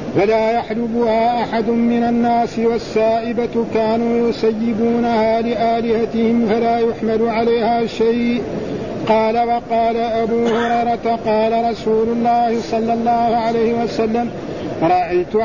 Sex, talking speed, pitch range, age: male, 95 wpm, 225-235 Hz, 50-69